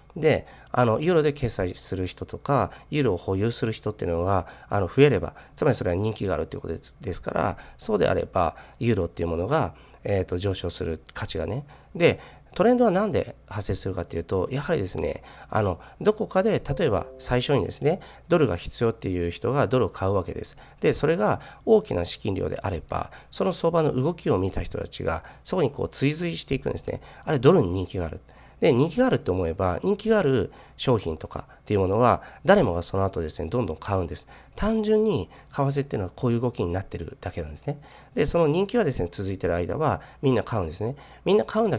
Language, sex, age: Japanese, male, 40-59